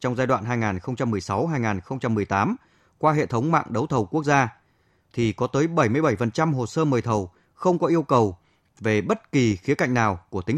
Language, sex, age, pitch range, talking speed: Vietnamese, male, 20-39, 110-150 Hz, 180 wpm